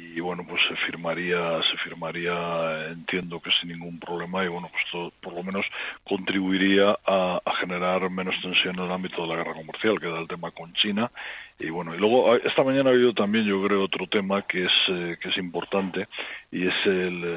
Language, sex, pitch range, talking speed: Spanish, male, 85-95 Hz, 205 wpm